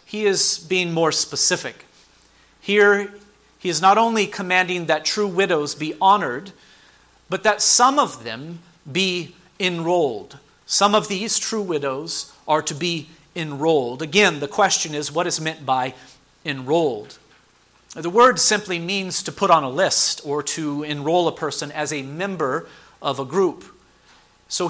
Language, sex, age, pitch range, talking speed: English, male, 40-59, 150-200 Hz, 150 wpm